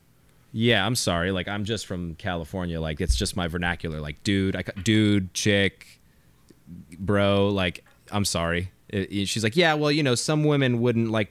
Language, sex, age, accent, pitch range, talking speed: English, male, 20-39, American, 90-115 Hz, 170 wpm